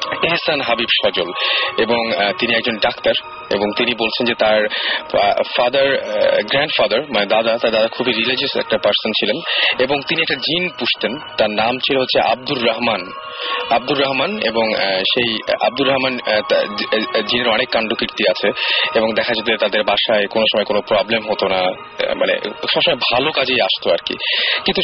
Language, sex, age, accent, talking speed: Bengali, male, 30-49, native, 100 wpm